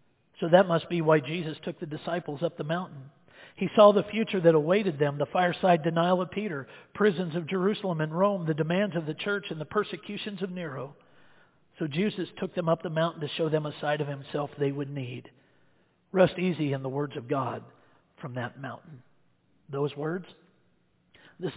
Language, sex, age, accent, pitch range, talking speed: English, male, 50-69, American, 145-200 Hz, 190 wpm